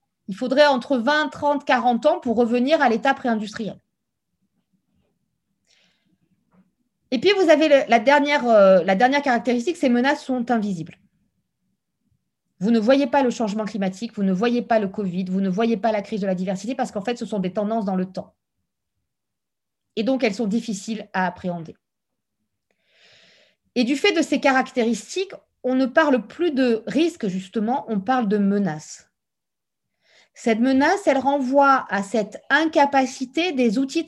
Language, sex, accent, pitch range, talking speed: French, female, French, 215-280 Hz, 160 wpm